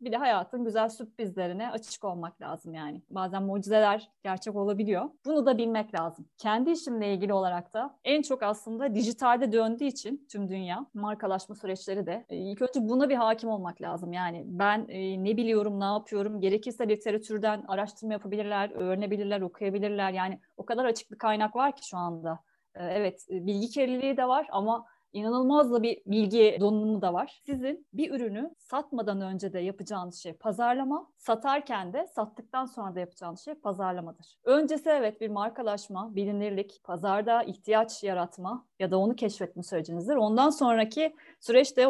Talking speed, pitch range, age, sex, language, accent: 155 wpm, 195-245 Hz, 30-49, female, Turkish, native